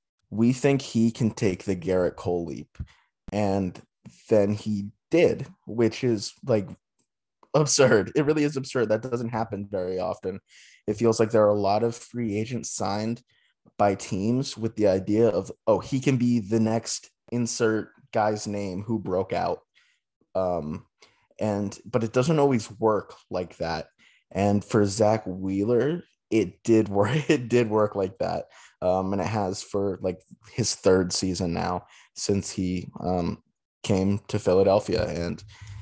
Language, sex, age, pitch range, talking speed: English, male, 20-39, 95-115 Hz, 155 wpm